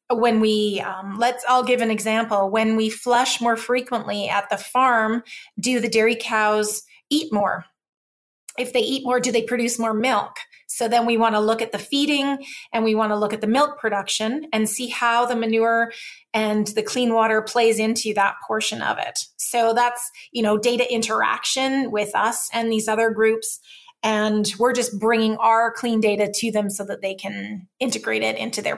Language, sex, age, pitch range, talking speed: English, female, 30-49, 215-245 Hz, 195 wpm